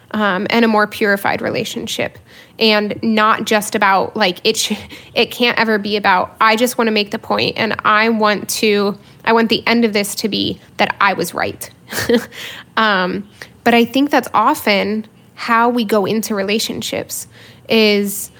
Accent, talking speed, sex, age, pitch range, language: American, 175 wpm, female, 10-29, 200-230 Hz, English